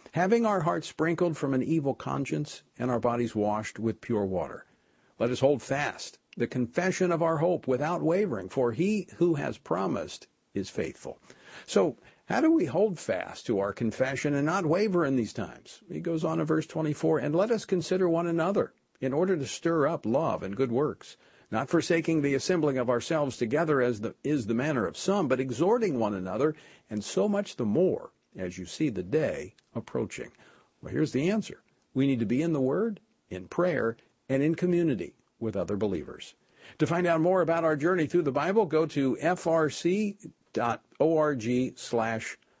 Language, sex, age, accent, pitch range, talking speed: English, male, 50-69, American, 120-170 Hz, 180 wpm